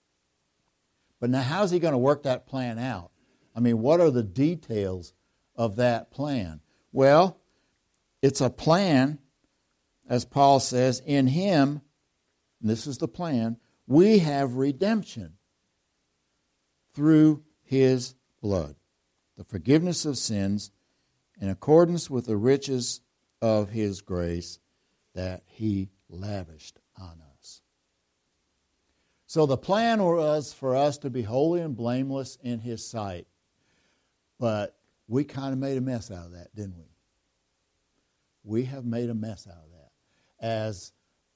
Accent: American